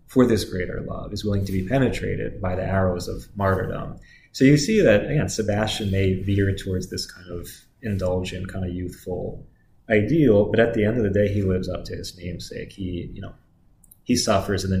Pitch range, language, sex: 95-115 Hz, English, male